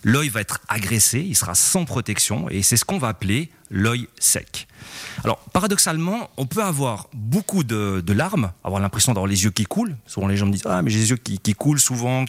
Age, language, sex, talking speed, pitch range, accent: 40-59, French, male, 230 wpm, 105-145 Hz, French